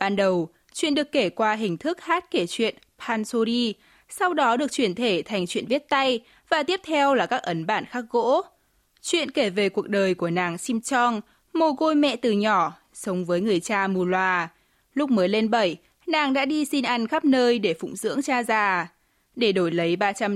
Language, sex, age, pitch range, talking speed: Vietnamese, female, 20-39, 190-270 Hz, 205 wpm